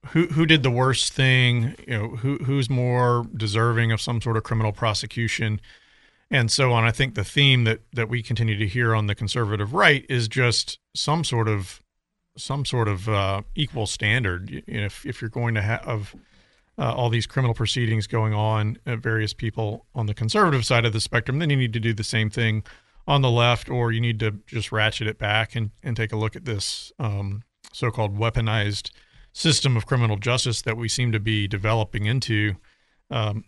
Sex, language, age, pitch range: male, English, 40-59, 110-125 Hz